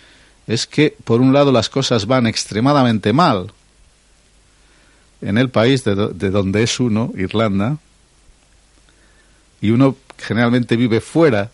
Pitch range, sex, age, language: 100-135 Hz, male, 60-79, Spanish